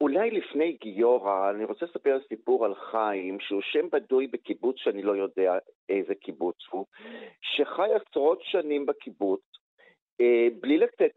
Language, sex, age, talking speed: Hebrew, male, 50-69, 135 wpm